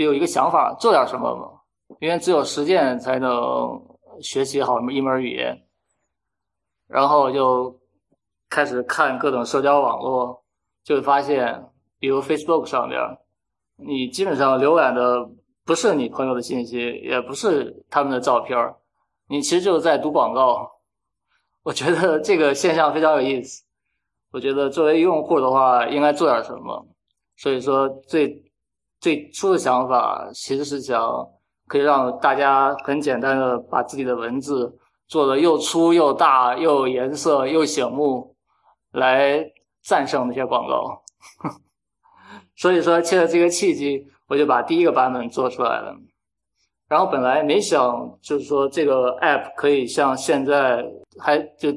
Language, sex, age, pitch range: Chinese, male, 20-39, 125-150 Hz